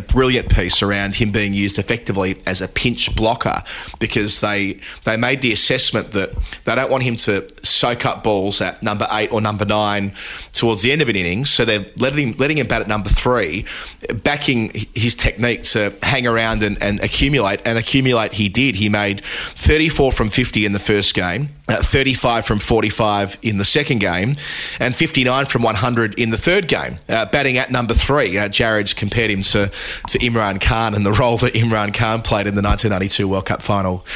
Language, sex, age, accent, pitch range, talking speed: English, male, 30-49, Australian, 100-120 Hz, 200 wpm